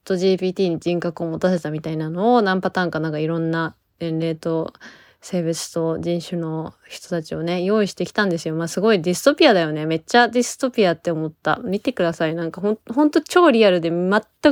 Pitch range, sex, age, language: 170-225 Hz, female, 20-39, Japanese